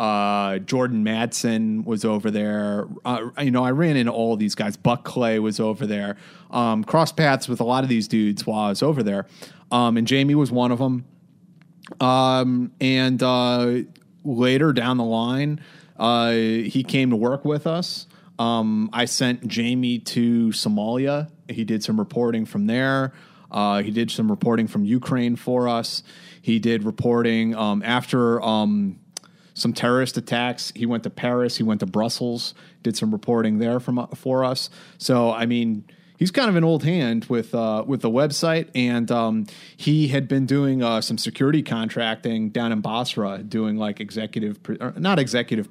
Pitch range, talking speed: 115-150 Hz, 175 wpm